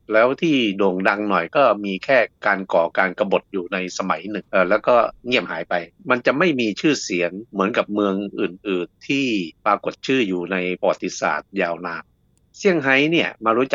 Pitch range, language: 90-110 Hz, Thai